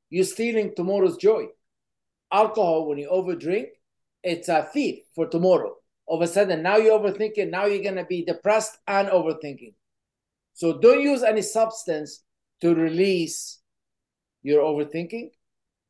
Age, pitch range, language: 50-69, 155-195 Hz, English